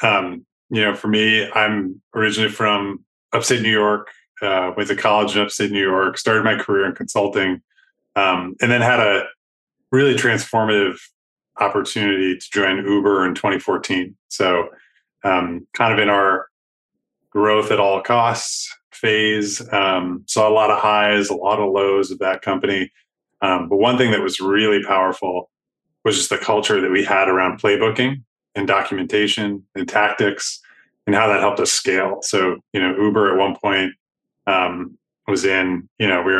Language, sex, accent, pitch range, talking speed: English, male, American, 95-110 Hz, 170 wpm